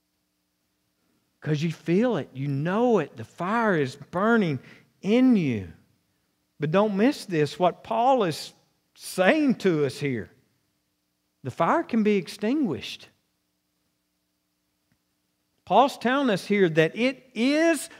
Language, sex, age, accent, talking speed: English, male, 50-69, American, 120 wpm